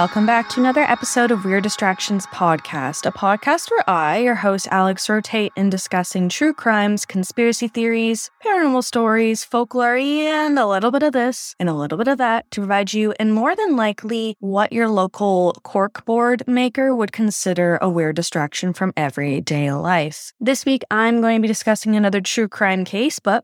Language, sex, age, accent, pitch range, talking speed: English, female, 10-29, American, 185-245 Hz, 180 wpm